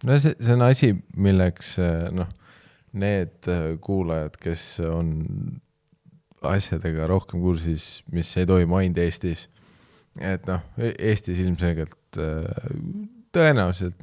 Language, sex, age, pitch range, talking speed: English, male, 20-39, 85-95 Hz, 105 wpm